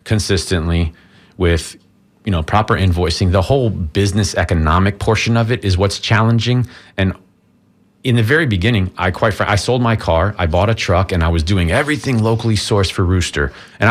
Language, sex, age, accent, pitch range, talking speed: English, male, 30-49, American, 85-105 Hz, 175 wpm